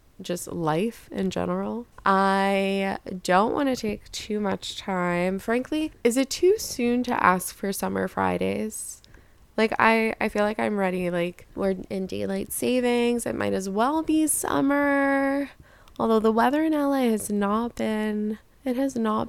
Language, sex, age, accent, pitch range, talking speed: English, female, 20-39, American, 195-250 Hz, 160 wpm